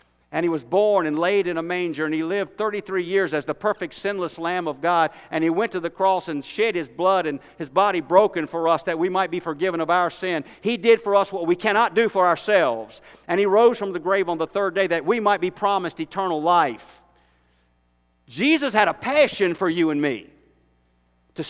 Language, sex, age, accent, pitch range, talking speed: English, male, 50-69, American, 135-190 Hz, 225 wpm